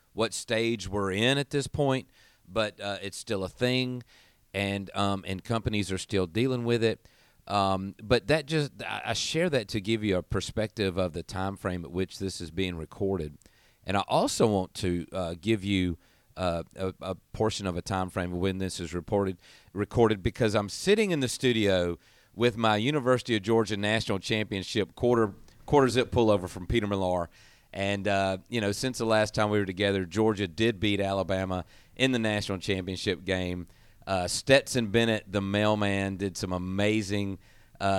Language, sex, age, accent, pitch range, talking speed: English, male, 40-59, American, 95-115 Hz, 180 wpm